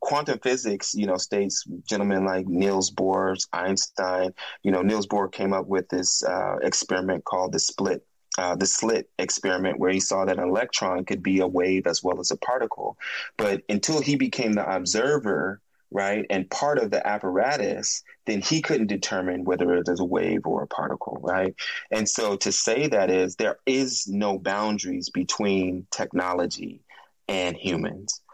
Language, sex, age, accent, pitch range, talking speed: English, male, 30-49, American, 90-105 Hz, 170 wpm